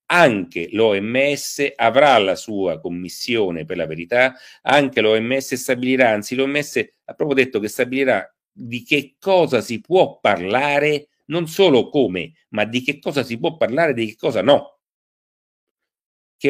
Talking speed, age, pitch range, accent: 150 wpm, 40-59, 95-140 Hz, native